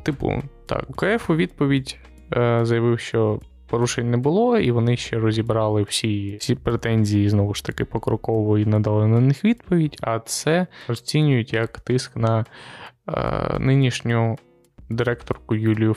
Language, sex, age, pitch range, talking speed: Ukrainian, male, 20-39, 110-135 Hz, 135 wpm